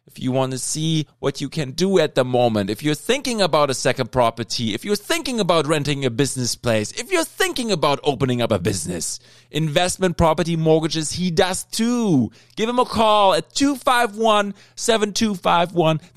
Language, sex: English, male